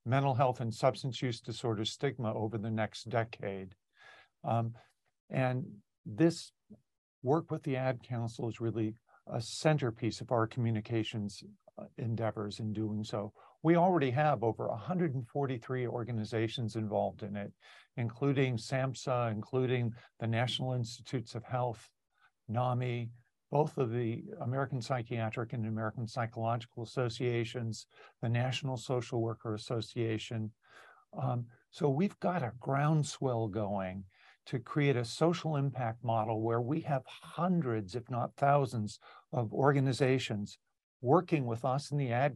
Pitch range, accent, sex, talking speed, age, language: 115-135 Hz, American, male, 125 wpm, 50-69, English